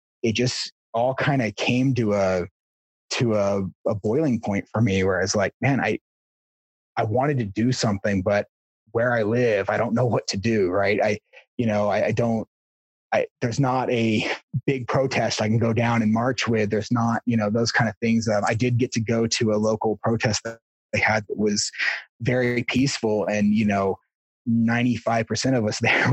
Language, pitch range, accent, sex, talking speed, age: English, 105-120 Hz, American, male, 200 wpm, 30-49